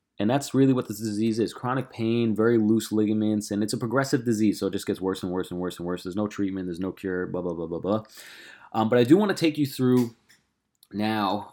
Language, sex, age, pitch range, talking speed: English, male, 20-39, 100-125 Hz, 250 wpm